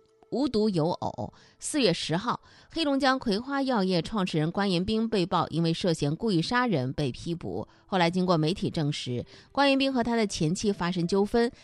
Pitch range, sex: 165-240 Hz, female